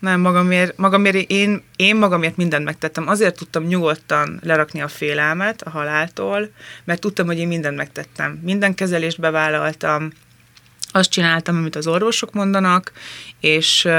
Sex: female